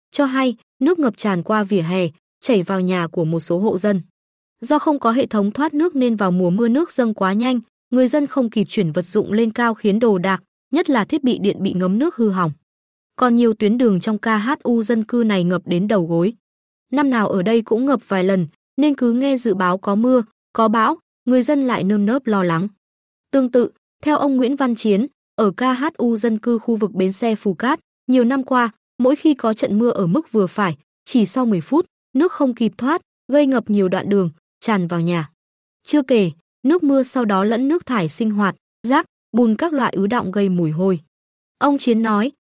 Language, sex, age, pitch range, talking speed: Vietnamese, female, 20-39, 195-255 Hz, 225 wpm